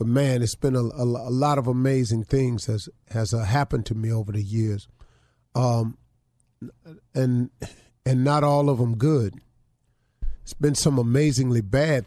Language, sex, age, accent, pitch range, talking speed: English, male, 40-59, American, 120-145 Hz, 165 wpm